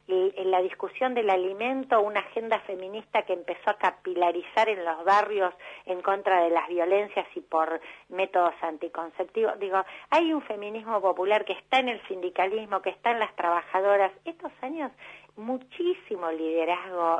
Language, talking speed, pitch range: Spanish, 150 wpm, 175-220 Hz